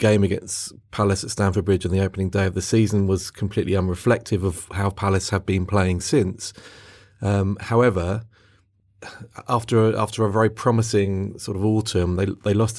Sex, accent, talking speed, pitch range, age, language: male, British, 170 wpm, 95-110 Hz, 30-49, English